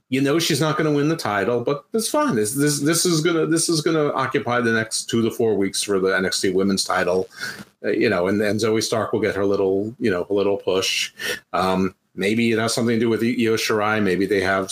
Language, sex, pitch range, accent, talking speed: English, male, 95-130 Hz, American, 245 wpm